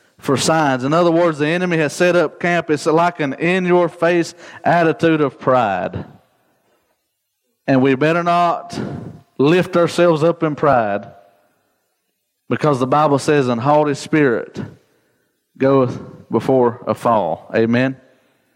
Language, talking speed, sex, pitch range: English, 135 wpm, male, 130-160 Hz